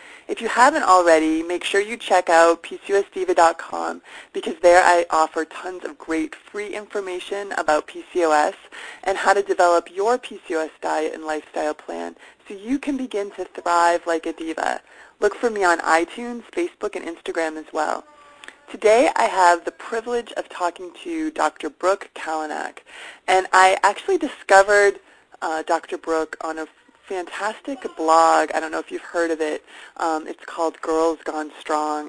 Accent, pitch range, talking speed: American, 160-210 Hz, 160 wpm